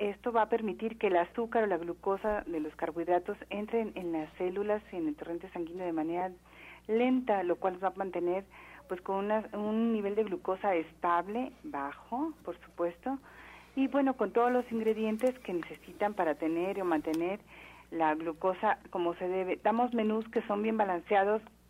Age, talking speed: 40-59, 175 wpm